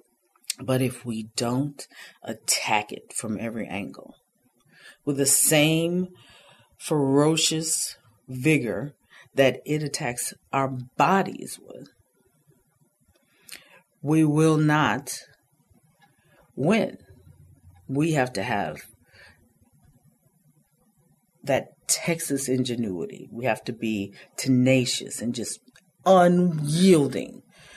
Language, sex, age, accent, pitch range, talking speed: English, female, 40-59, American, 120-150 Hz, 85 wpm